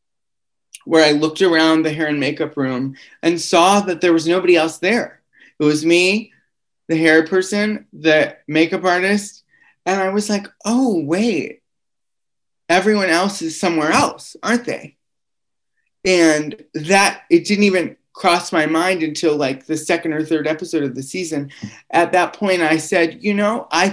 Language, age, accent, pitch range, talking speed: English, 30-49, American, 145-180 Hz, 165 wpm